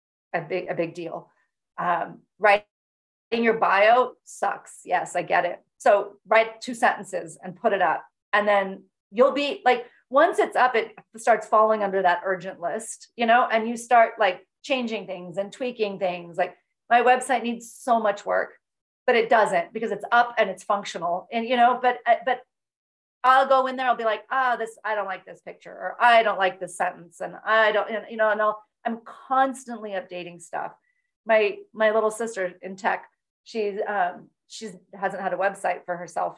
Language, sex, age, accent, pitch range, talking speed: English, female, 40-59, American, 185-235 Hz, 195 wpm